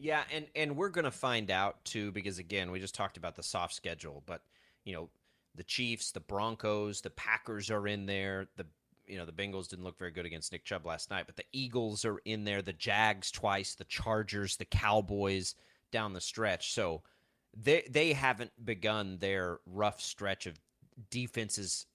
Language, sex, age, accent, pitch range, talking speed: English, male, 30-49, American, 95-125 Hz, 190 wpm